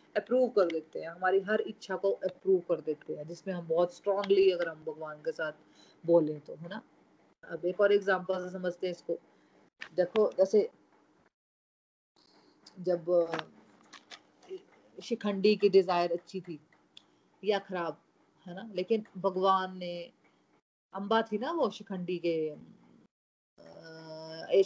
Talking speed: 135 wpm